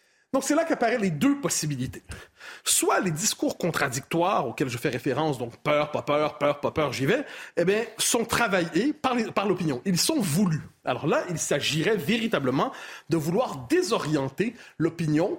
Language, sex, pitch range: French, male, 150-230 Hz